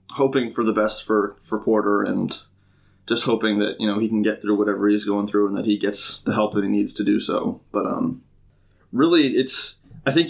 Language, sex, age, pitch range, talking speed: English, male, 20-39, 100-110 Hz, 225 wpm